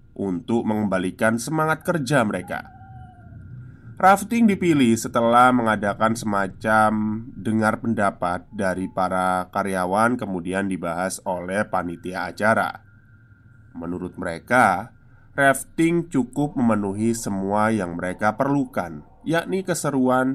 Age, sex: 20-39, male